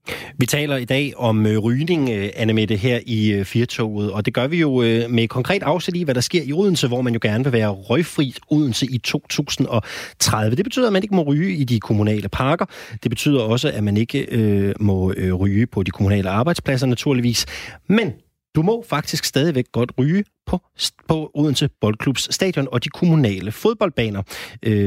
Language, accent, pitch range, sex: Danish, native, 110-150 Hz, male